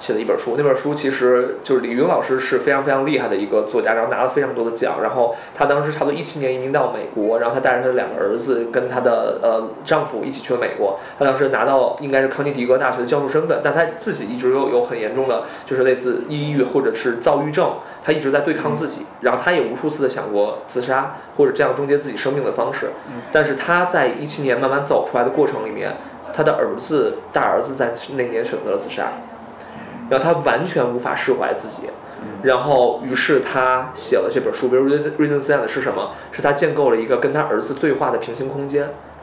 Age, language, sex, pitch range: 20-39, Chinese, male, 130-155 Hz